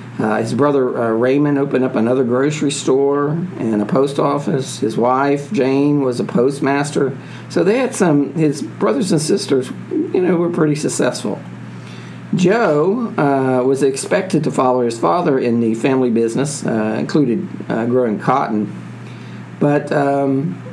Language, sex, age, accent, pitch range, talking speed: English, male, 50-69, American, 110-140 Hz, 150 wpm